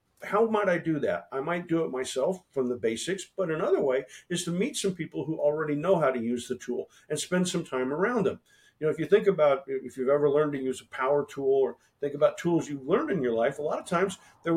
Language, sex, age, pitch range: English, male, 50-69, 140-195 Hz